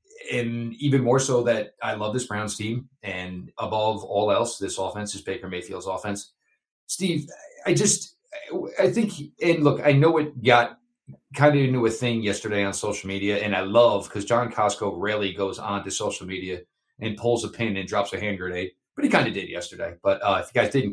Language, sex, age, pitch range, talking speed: English, male, 30-49, 100-130 Hz, 210 wpm